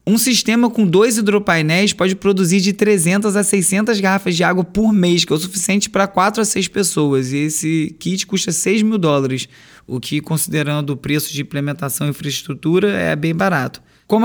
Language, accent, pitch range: Portuguese, Brazilian, 160-205 Hz